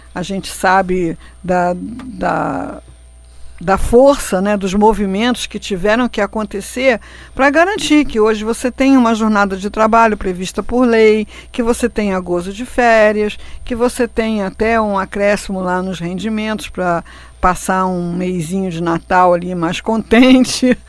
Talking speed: 145 wpm